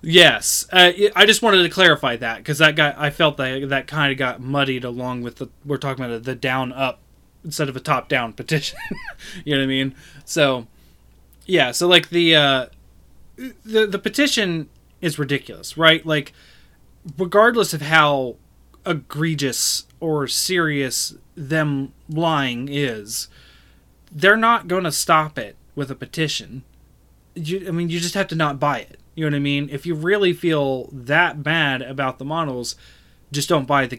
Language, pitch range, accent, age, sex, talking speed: English, 135-170 Hz, American, 20-39, male, 175 wpm